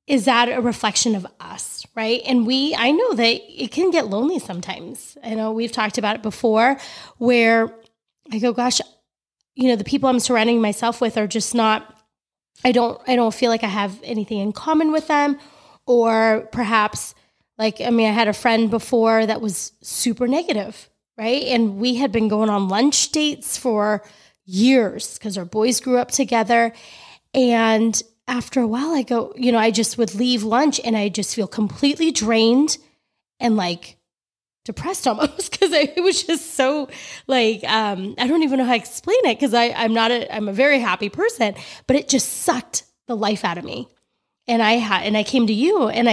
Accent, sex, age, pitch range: American, female, 20-39, 215-260 Hz